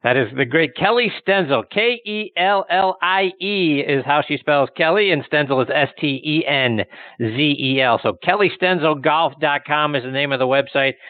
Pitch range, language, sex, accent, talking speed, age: 135-165 Hz, English, male, American, 130 wpm, 50-69